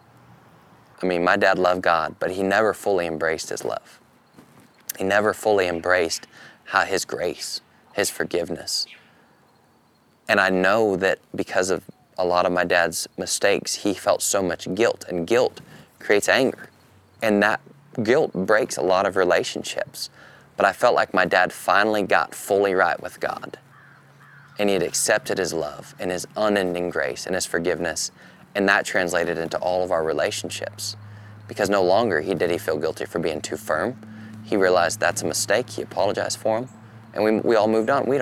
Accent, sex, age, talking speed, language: American, male, 20-39, 175 wpm, English